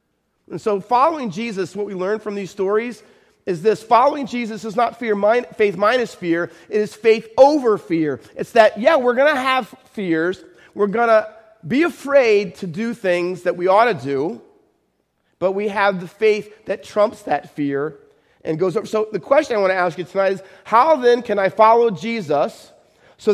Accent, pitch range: American, 185-235 Hz